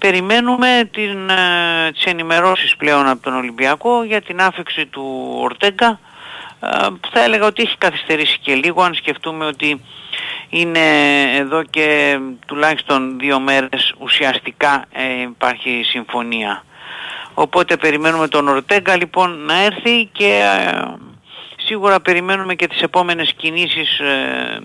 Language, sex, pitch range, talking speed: Greek, male, 135-180 Hz, 110 wpm